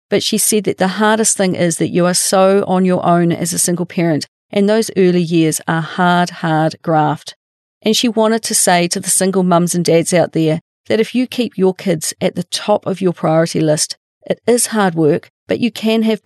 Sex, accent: female, Australian